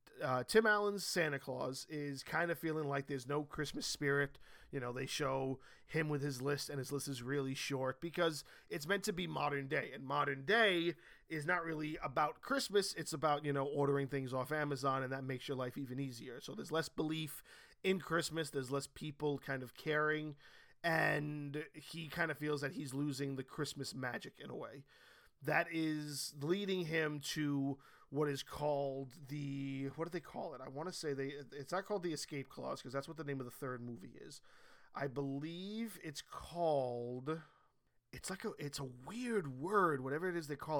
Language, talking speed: English, 200 wpm